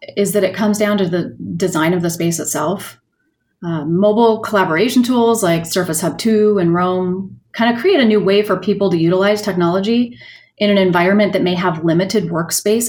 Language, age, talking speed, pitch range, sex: English, 30-49, 190 wpm, 170-215 Hz, female